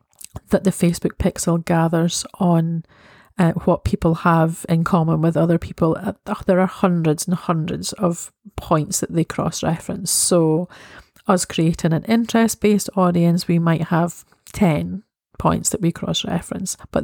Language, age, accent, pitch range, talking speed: English, 30-49, British, 165-195 Hz, 145 wpm